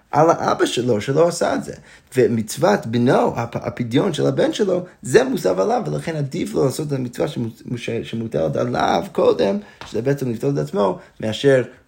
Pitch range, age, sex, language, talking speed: 110-145 Hz, 20-39, male, Hebrew, 165 wpm